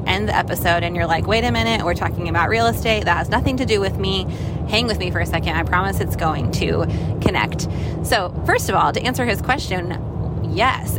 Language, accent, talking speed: English, American, 225 wpm